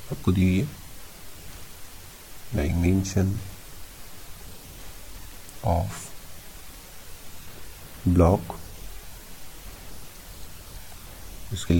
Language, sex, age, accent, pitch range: Hindi, male, 50-69, native, 85-100 Hz